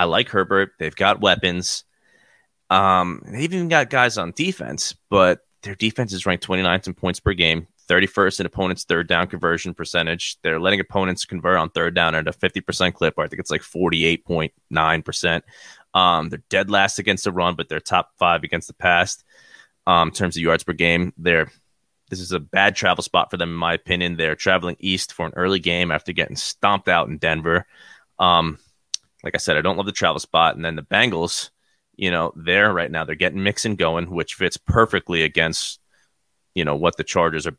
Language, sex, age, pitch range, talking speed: English, male, 20-39, 85-95 Hz, 205 wpm